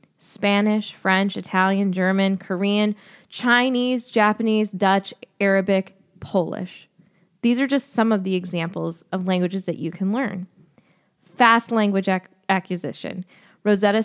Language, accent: English, American